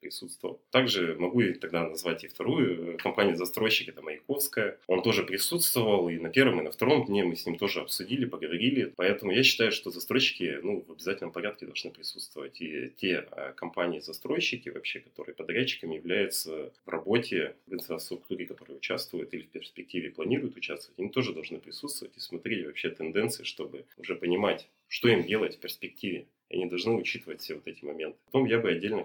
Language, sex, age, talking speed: Russian, male, 30-49, 170 wpm